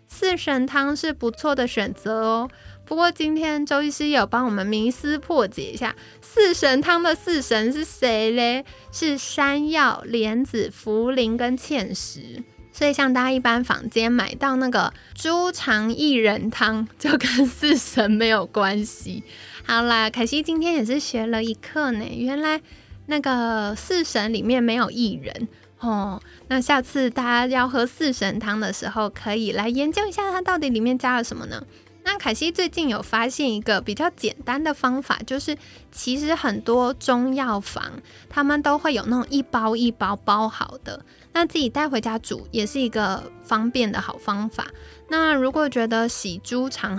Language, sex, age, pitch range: Chinese, female, 20-39, 225-295 Hz